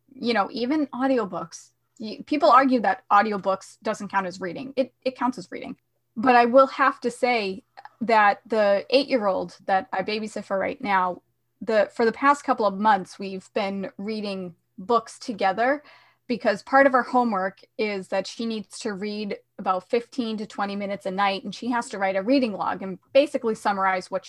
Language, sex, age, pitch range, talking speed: English, female, 20-39, 185-240 Hz, 190 wpm